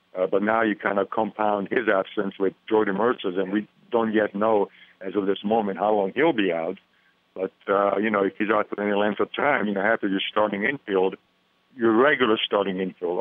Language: English